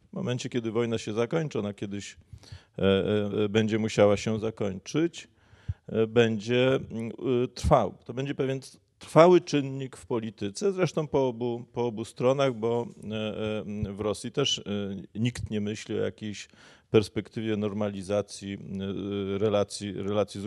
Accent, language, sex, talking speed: native, Polish, male, 115 wpm